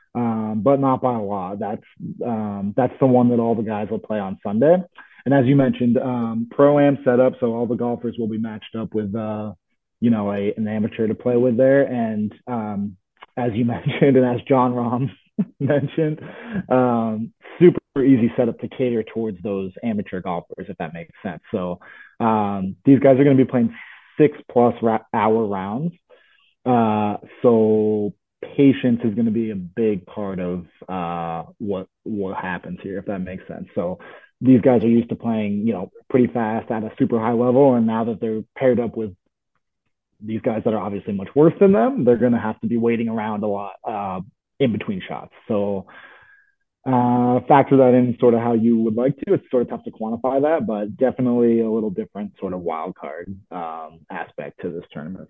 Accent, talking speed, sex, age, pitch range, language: American, 200 wpm, male, 20-39, 110-130 Hz, English